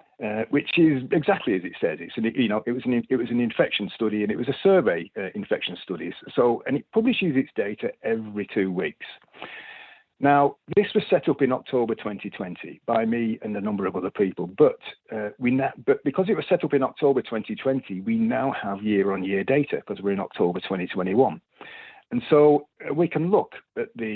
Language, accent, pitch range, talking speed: English, British, 110-150 Hz, 205 wpm